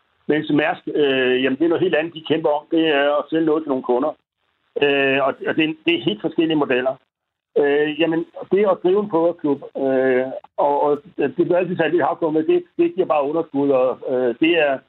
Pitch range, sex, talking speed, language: 140-175 Hz, male, 230 wpm, Danish